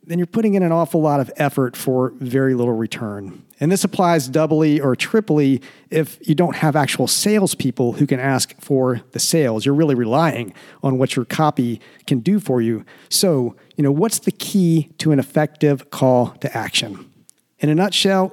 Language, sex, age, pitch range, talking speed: English, male, 50-69, 135-170 Hz, 185 wpm